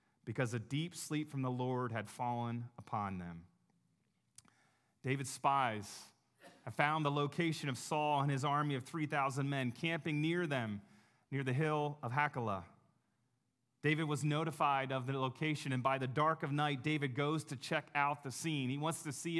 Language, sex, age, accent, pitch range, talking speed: English, male, 30-49, American, 130-160 Hz, 175 wpm